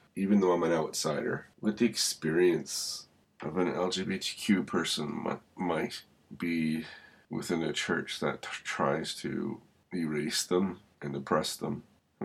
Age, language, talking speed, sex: 30-49, English, 125 wpm, male